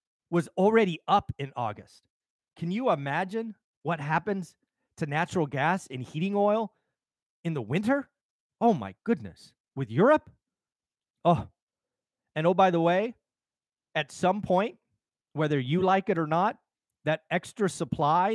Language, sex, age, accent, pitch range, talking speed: English, male, 30-49, American, 140-185 Hz, 135 wpm